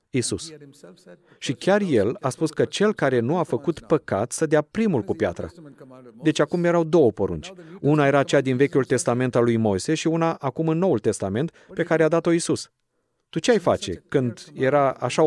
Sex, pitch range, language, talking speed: male, 115-145 Hz, Romanian, 195 wpm